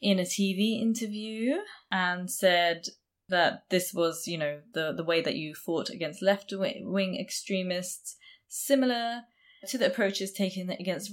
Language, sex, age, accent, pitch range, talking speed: English, female, 20-39, British, 175-215 Hz, 140 wpm